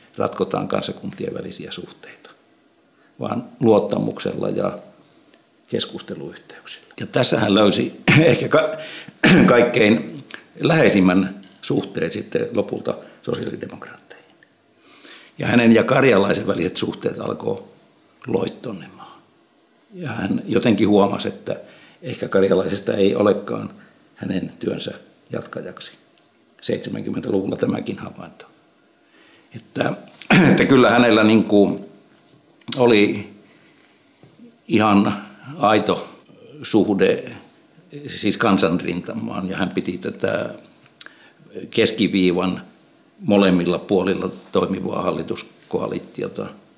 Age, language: 60-79, Finnish